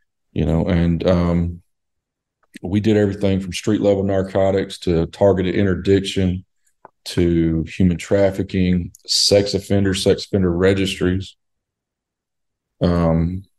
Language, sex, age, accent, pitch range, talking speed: English, male, 40-59, American, 85-100 Hz, 100 wpm